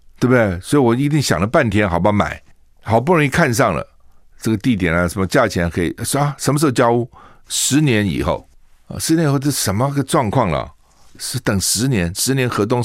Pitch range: 85-140 Hz